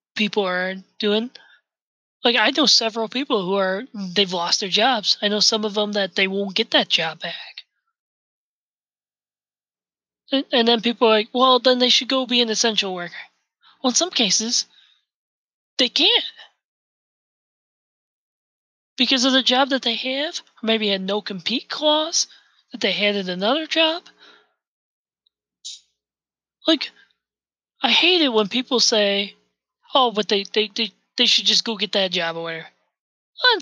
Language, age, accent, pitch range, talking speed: English, 20-39, American, 200-265 Hz, 155 wpm